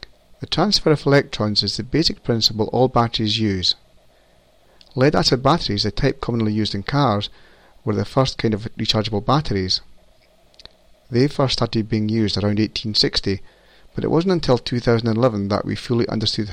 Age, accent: 40-59, British